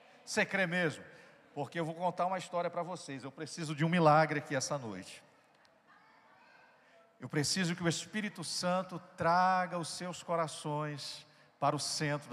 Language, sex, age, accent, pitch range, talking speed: Portuguese, male, 50-69, Brazilian, 155-205 Hz, 155 wpm